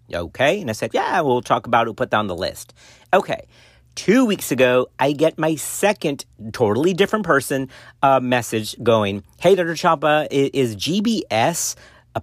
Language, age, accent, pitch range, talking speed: English, 40-59, American, 115-155 Hz, 165 wpm